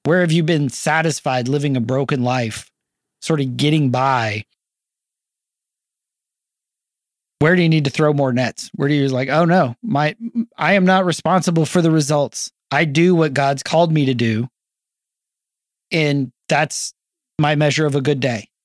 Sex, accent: male, American